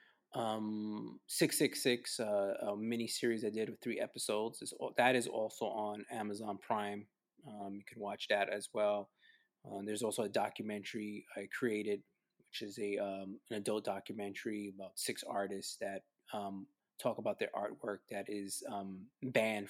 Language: English